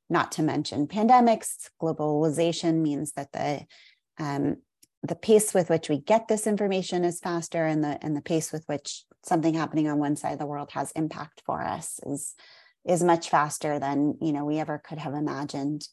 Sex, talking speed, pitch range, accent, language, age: female, 190 wpm, 150-180 Hz, American, English, 30-49